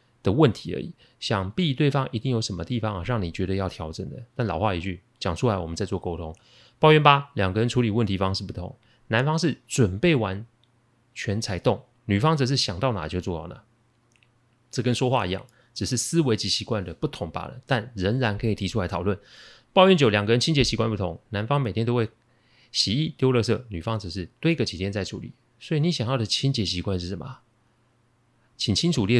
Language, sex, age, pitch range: Chinese, male, 30-49, 100-130 Hz